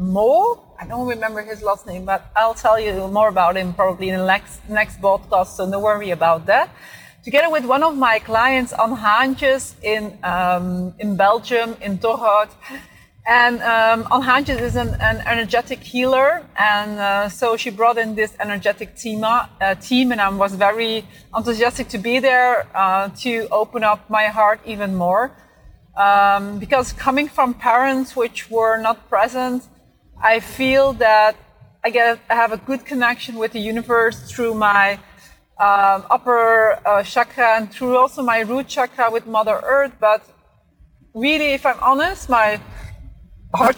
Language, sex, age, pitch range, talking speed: Dutch, female, 30-49, 205-250 Hz, 165 wpm